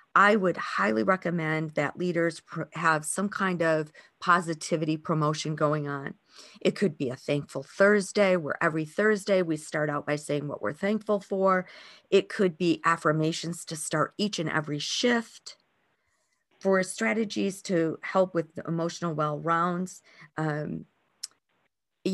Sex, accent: female, American